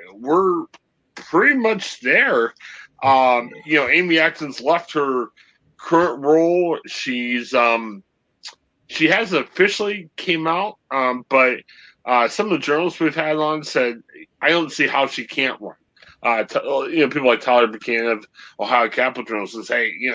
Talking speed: 160 wpm